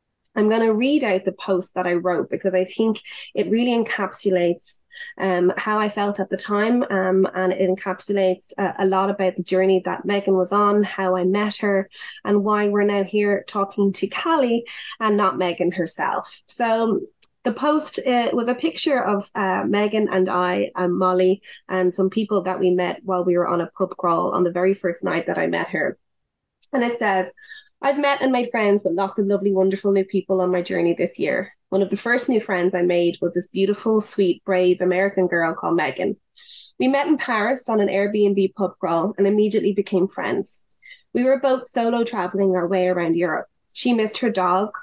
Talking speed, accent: 205 wpm, Irish